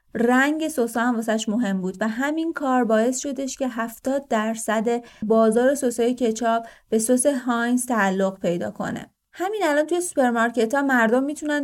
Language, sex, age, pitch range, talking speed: Persian, female, 30-49, 220-290 Hz, 155 wpm